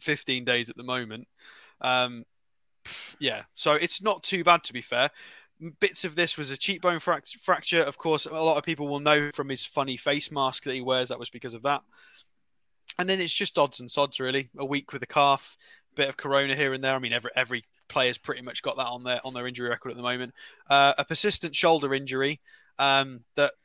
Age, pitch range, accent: 20-39, 125-150 Hz, British